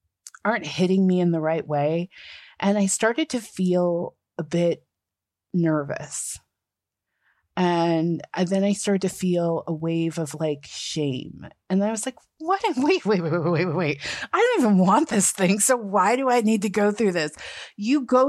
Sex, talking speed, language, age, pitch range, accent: female, 180 wpm, English, 30-49, 160-215 Hz, American